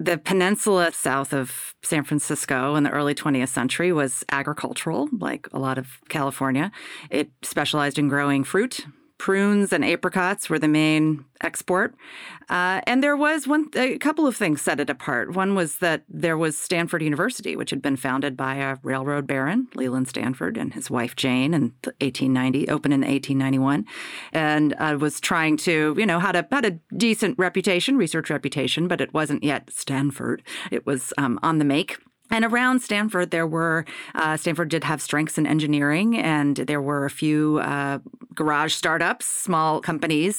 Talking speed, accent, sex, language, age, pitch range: 175 wpm, American, female, English, 30-49, 140-175 Hz